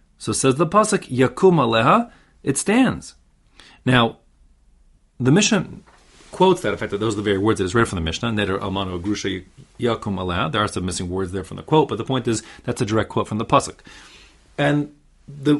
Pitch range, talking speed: 100-140 Hz, 195 wpm